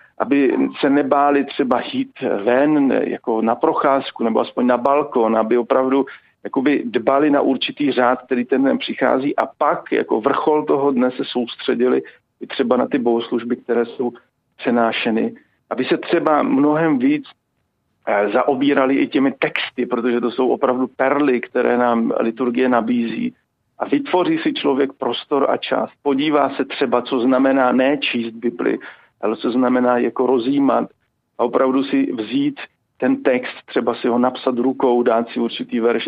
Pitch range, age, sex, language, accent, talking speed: 120-155 Hz, 50-69, male, Czech, native, 150 wpm